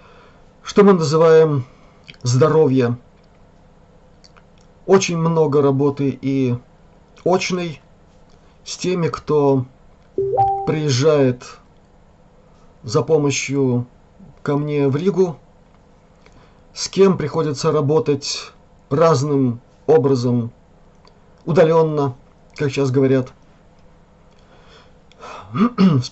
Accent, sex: native, male